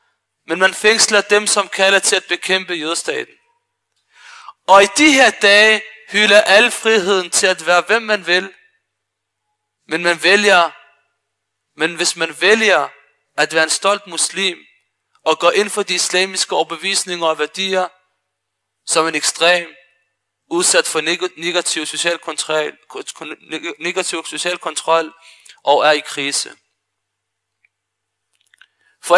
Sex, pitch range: male, 155-200 Hz